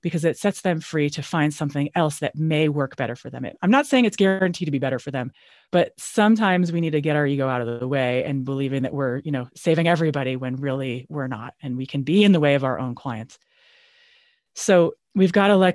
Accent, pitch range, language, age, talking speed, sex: American, 135-180 Hz, English, 30-49, 245 wpm, female